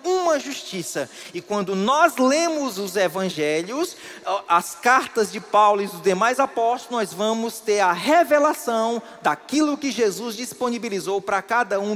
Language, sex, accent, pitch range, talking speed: Portuguese, male, Brazilian, 225-300 Hz, 140 wpm